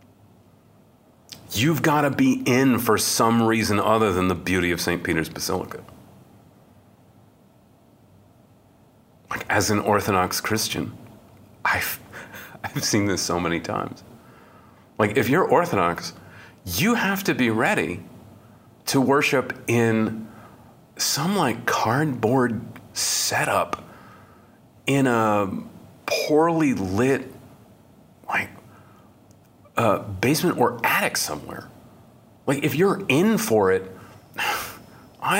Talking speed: 100 wpm